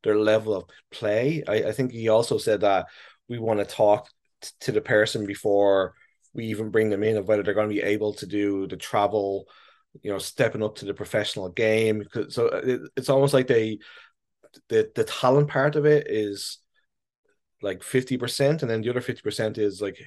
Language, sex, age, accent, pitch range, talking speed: English, male, 20-39, Irish, 105-130 Hz, 195 wpm